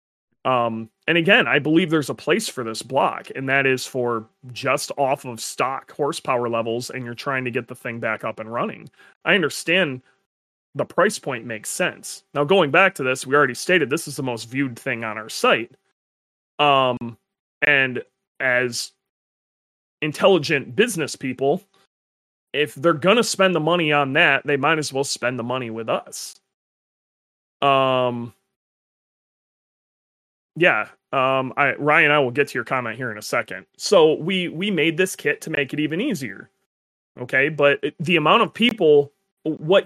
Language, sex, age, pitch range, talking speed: English, male, 30-49, 125-165 Hz, 170 wpm